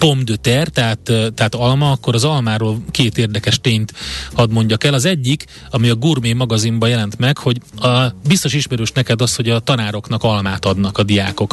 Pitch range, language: 110-130 Hz, Hungarian